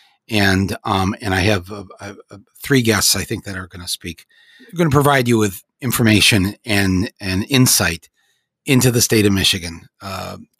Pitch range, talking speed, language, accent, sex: 95-115 Hz, 175 wpm, English, American, male